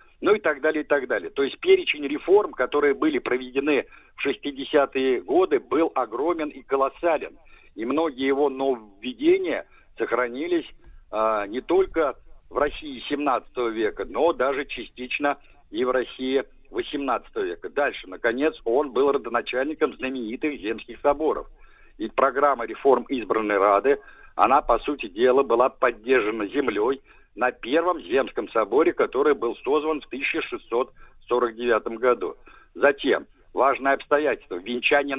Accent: native